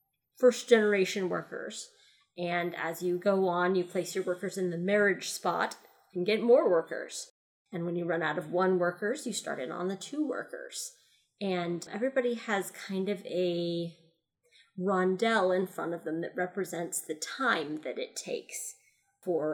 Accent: American